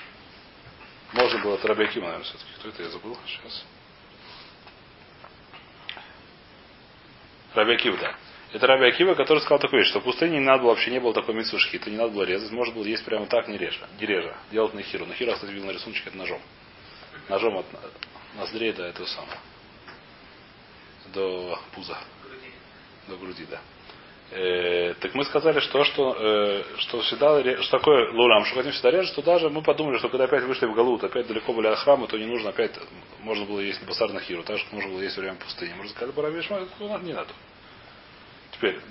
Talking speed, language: 185 wpm, Russian